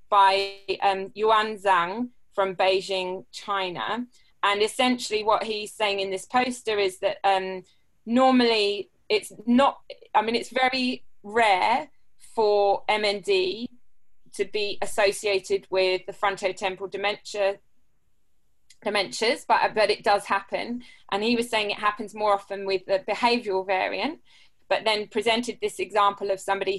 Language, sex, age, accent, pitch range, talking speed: English, female, 20-39, British, 195-235 Hz, 135 wpm